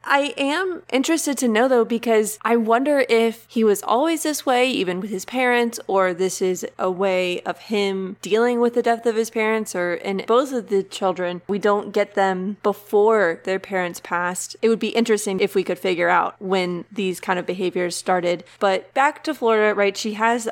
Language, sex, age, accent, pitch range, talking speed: English, female, 20-39, American, 185-220 Hz, 200 wpm